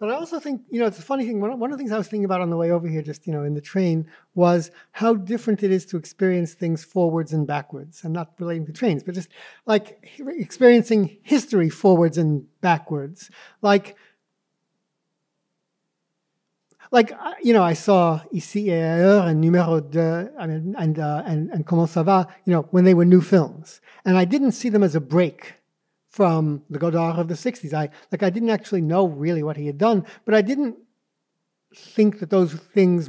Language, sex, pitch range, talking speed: English, male, 165-205 Hz, 205 wpm